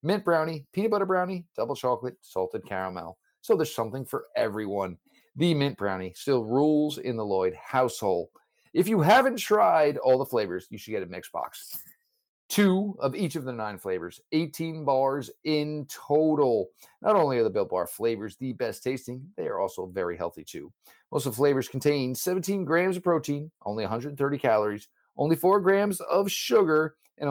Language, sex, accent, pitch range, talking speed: English, male, American, 120-170 Hz, 180 wpm